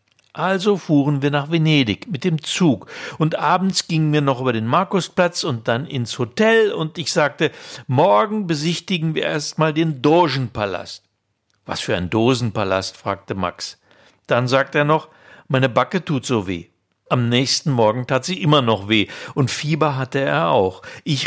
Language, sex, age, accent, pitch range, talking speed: German, male, 60-79, German, 120-170 Hz, 165 wpm